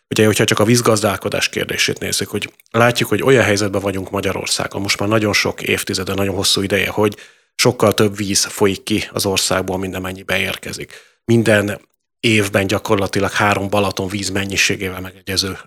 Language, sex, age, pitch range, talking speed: Hungarian, male, 30-49, 95-110 Hz, 155 wpm